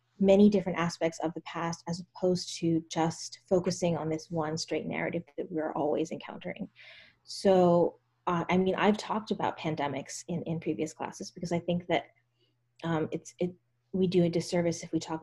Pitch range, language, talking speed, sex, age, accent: 160-185 Hz, English, 180 wpm, female, 20-39, American